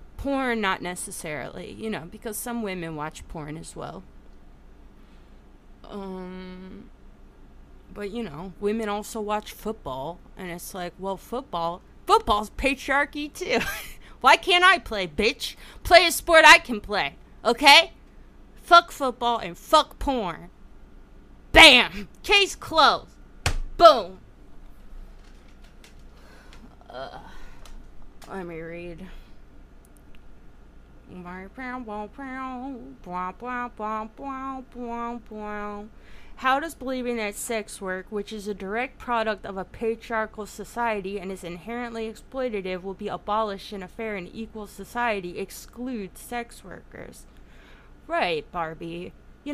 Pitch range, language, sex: 185-250 Hz, English, female